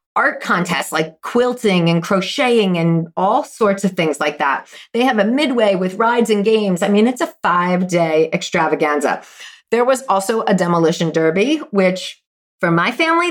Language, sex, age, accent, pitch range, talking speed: English, female, 40-59, American, 175-245 Hz, 165 wpm